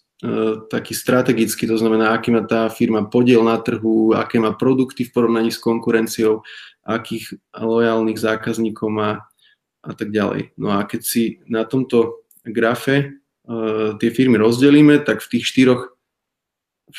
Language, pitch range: Slovak, 115-125 Hz